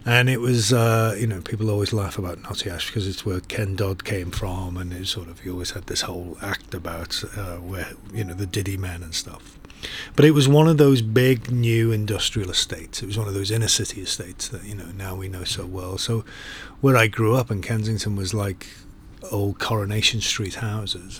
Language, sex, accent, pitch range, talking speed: English, male, British, 95-115 Hz, 225 wpm